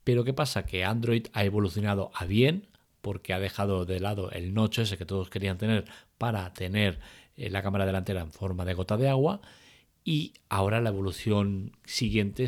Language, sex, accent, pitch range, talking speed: Spanish, male, Spanish, 95-115 Hz, 180 wpm